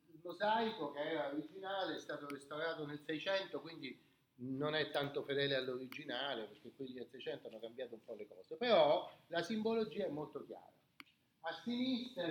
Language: Italian